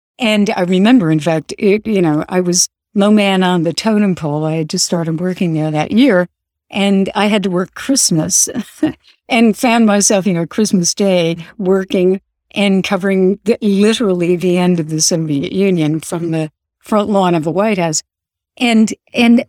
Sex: female